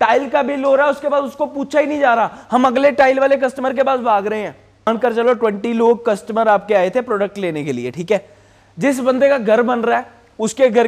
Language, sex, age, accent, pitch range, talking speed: Hindi, male, 30-49, native, 185-250 Hz, 190 wpm